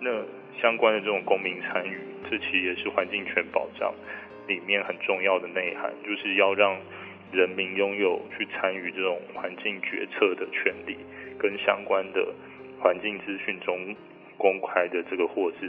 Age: 20-39